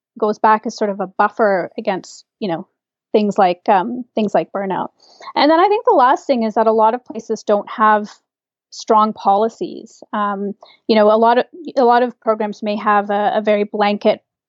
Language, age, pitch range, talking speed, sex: English, 30-49, 210-245 Hz, 205 wpm, female